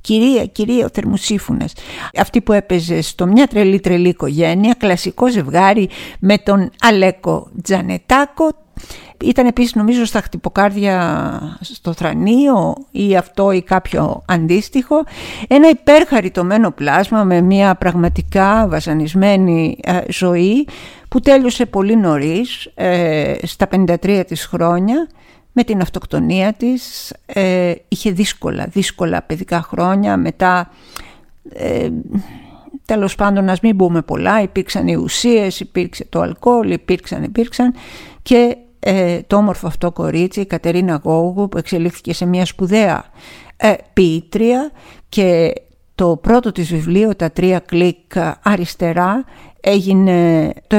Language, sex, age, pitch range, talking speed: Greek, female, 50-69, 175-220 Hz, 115 wpm